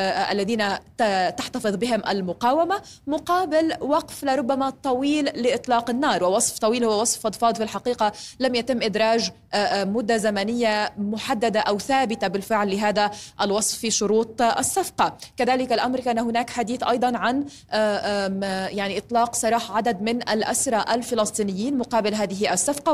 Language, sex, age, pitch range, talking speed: Arabic, female, 20-39, 205-245 Hz, 125 wpm